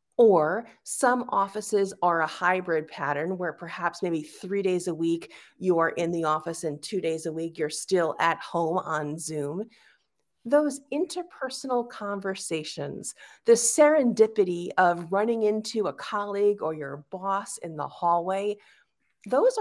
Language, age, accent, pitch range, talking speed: English, 40-59, American, 180-245 Hz, 140 wpm